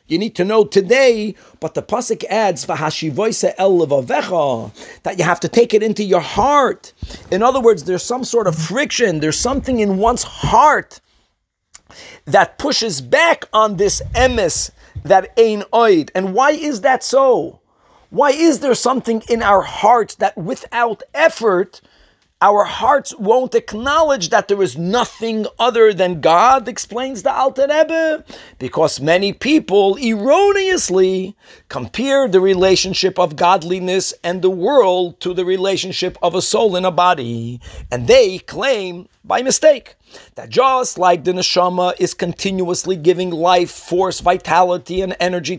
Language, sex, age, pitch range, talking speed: English, male, 40-59, 180-245 Hz, 140 wpm